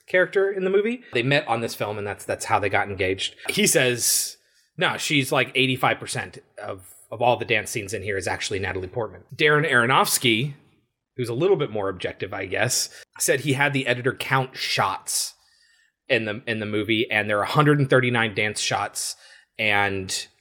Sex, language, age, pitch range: male, English, 30-49, 110-145 Hz